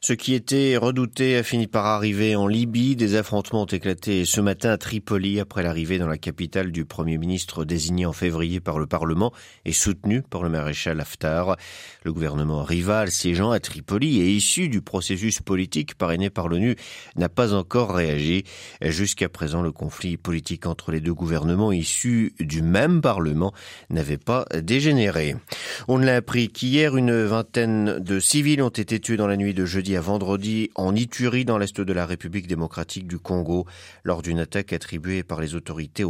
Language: French